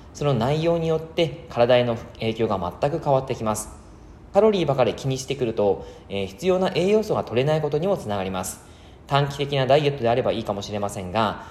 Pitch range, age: 110-170 Hz, 20-39